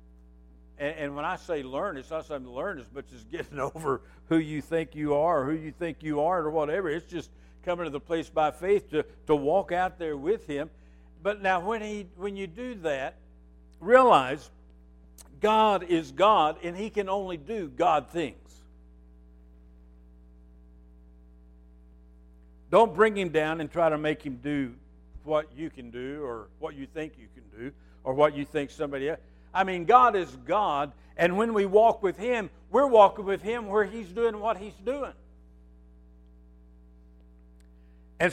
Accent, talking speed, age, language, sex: American, 175 wpm, 60-79, English, male